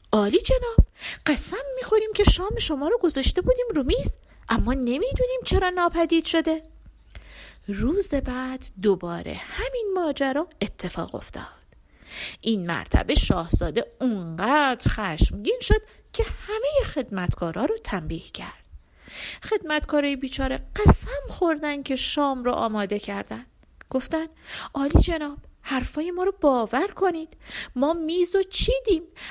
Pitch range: 220-350 Hz